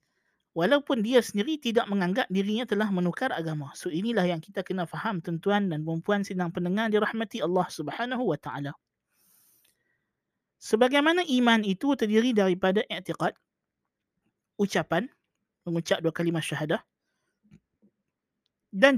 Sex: male